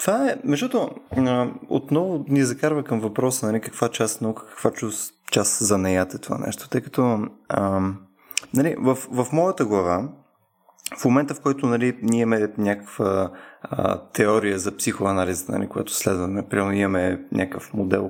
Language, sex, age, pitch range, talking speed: Bulgarian, male, 20-39, 100-130 Hz, 155 wpm